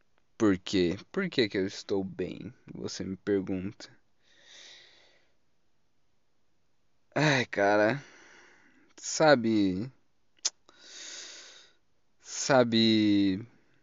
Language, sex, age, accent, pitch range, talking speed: Portuguese, male, 20-39, Brazilian, 105-150 Hz, 65 wpm